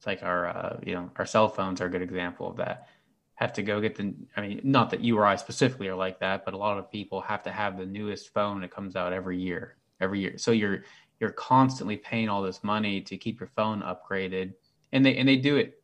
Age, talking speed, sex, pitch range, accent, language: 20-39, 260 wpm, male, 95-110 Hz, American, English